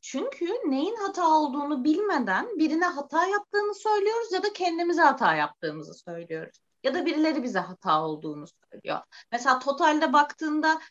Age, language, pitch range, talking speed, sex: 30-49, Turkish, 210-310 Hz, 140 wpm, female